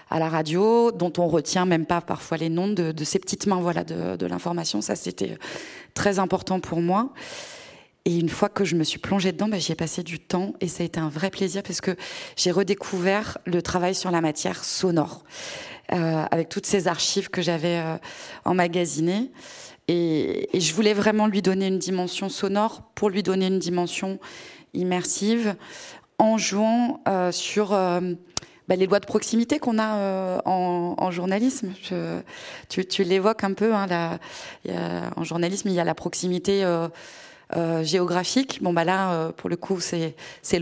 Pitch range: 170-200 Hz